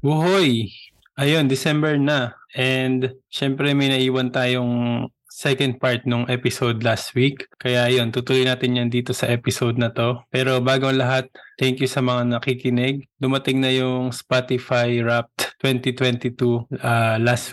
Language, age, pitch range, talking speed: Filipino, 20-39, 120-130 Hz, 135 wpm